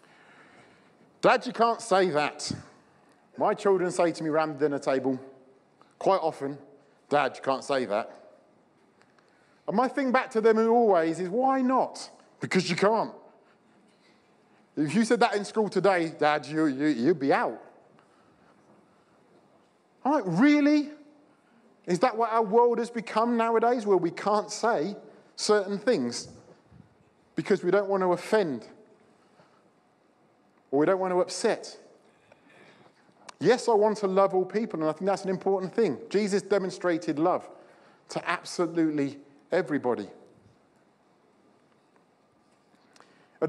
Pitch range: 170-220 Hz